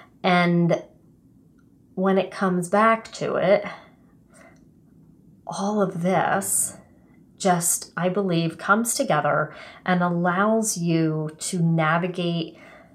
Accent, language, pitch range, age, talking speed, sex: American, English, 165-195 Hz, 30-49, 95 wpm, female